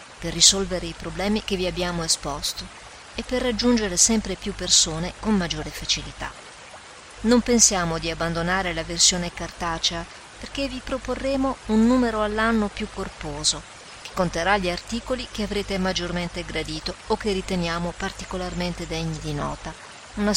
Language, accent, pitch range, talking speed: Italian, native, 170-215 Hz, 140 wpm